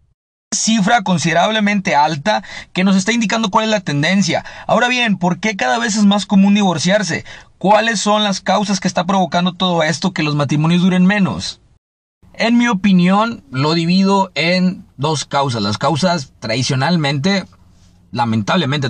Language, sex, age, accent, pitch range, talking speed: Spanish, male, 30-49, Mexican, 115-185 Hz, 150 wpm